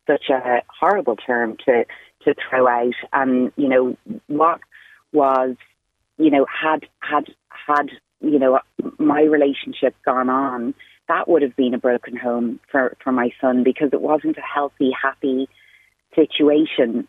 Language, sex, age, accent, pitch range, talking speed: English, female, 30-49, British, 130-160 Hz, 150 wpm